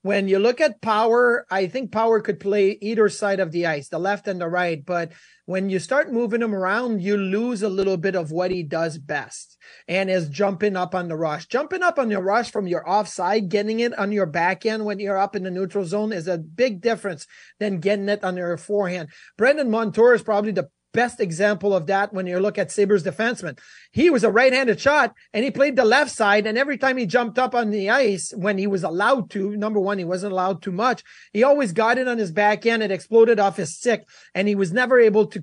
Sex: male